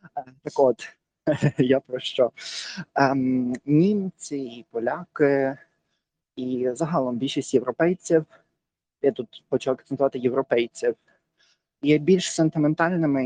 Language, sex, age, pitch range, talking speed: Ukrainian, male, 20-39, 130-160 Hz, 90 wpm